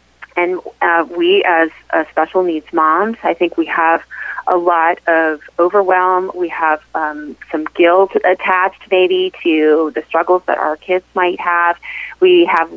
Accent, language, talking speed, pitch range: American, English, 155 wpm, 160-185 Hz